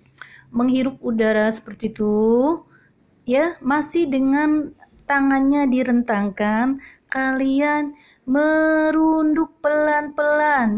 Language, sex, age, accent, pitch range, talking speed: Indonesian, female, 30-49, native, 205-265 Hz, 65 wpm